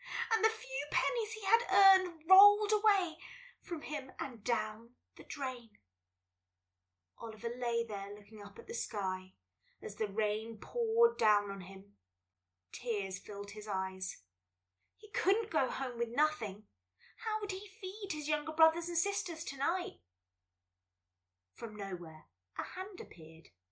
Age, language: 20-39, English